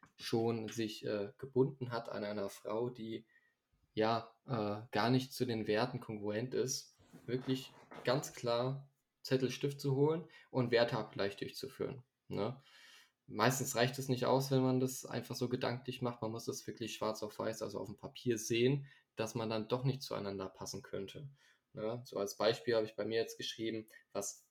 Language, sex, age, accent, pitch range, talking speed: German, male, 20-39, German, 110-130 Hz, 175 wpm